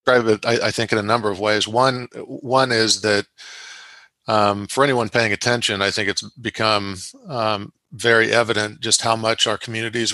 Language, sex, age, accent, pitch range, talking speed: English, male, 40-59, American, 105-115 Hz, 170 wpm